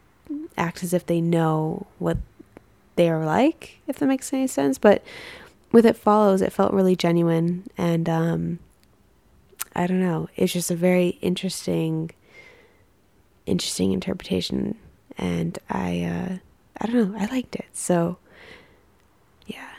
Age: 20-39